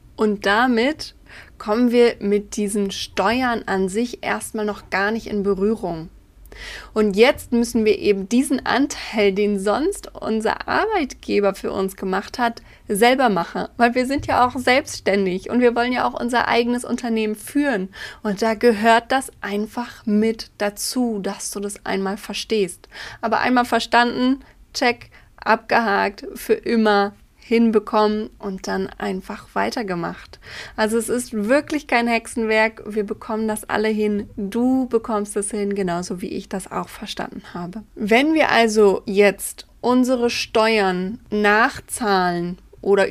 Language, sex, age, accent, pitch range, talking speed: German, female, 20-39, German, 205-240 Hz, 140 wpm